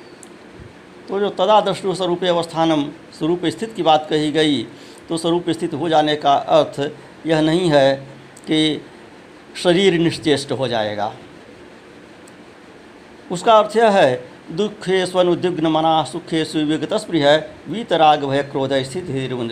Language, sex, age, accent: Hindi, male, 60-79, native